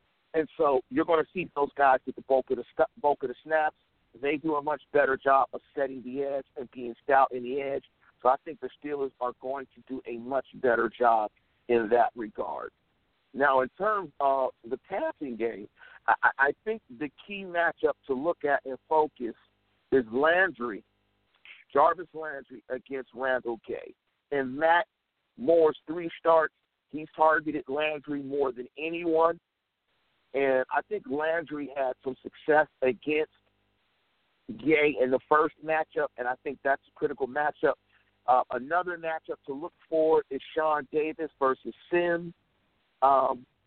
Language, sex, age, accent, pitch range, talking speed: English, male, 50-69, American, 130-160 Hz, 160 wpm